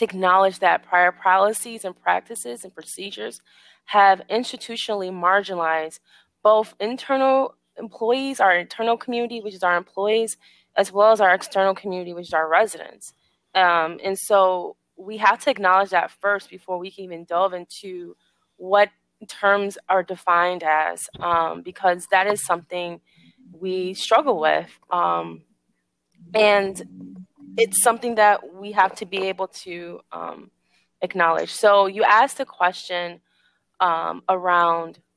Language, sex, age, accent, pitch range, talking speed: English, female, 20-39, American, 175-205 Hz, 135 wpm